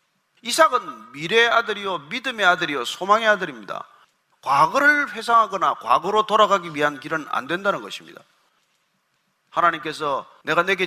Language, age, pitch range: Korean, 40-59, 205-265 Hz